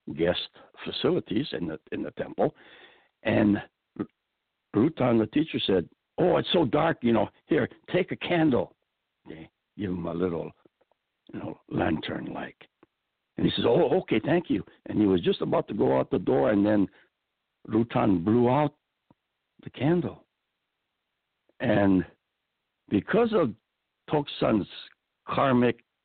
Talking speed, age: 135 wpm, 60-79